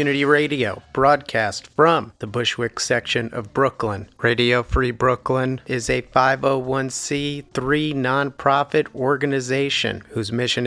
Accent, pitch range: American, 115-135 Hz